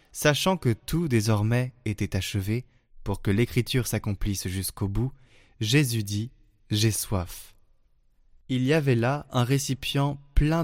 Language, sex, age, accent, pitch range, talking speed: French, male, 20-39, French, 105-135 Hz, 130 wpm